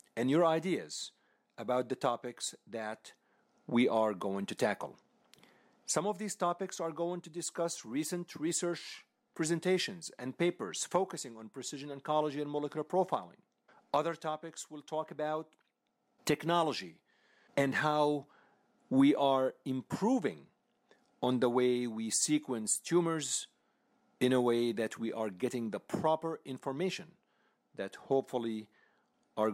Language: English